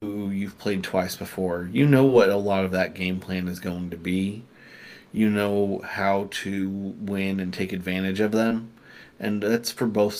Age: 30-49